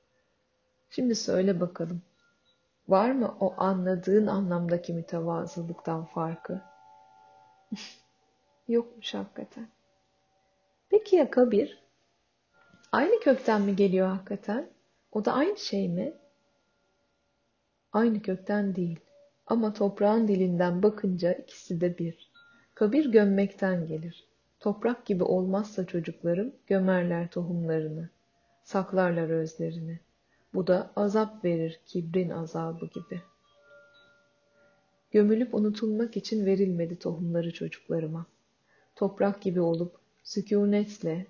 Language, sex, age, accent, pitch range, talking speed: Turkish, female, 30-49, native, 170-215 Hz, 90 wpm